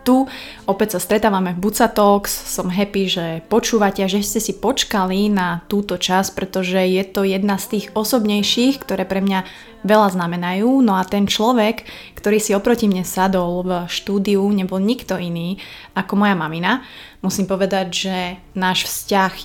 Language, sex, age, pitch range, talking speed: Slovak, female, 20-39, 190-215 Hz, 160 wpm